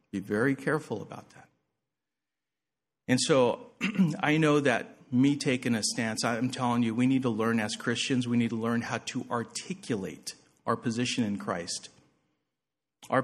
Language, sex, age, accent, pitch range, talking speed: English, male, 50-69, American, 115-150 Hz, 160 wpm